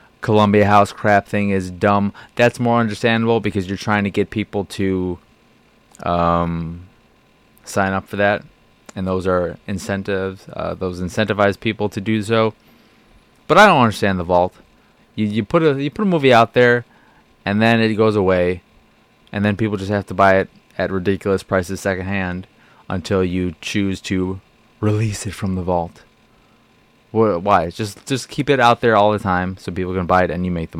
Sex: male